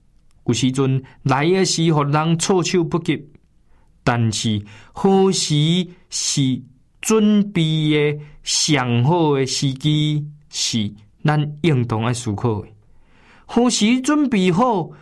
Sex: male